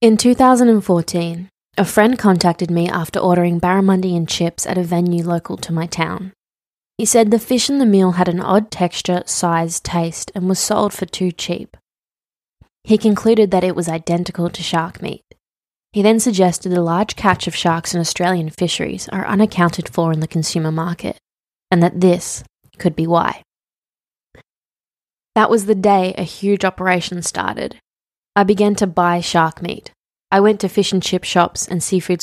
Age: 20-39